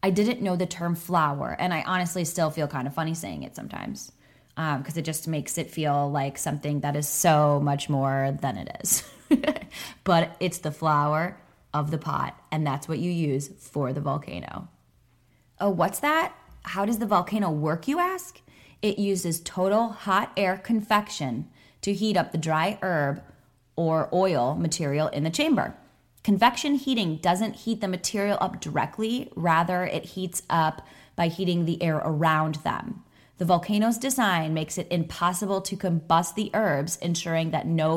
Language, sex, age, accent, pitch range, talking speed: English, female, 20-39, American, 155-205 Hz, 170 wpm